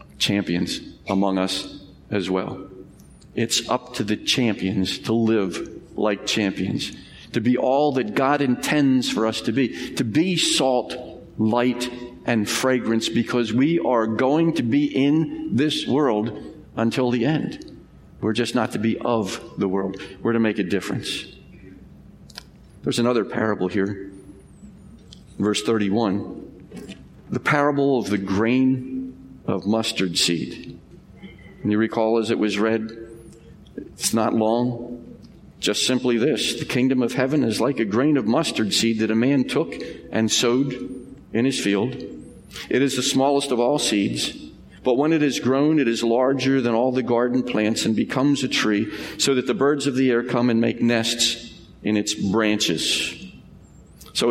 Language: English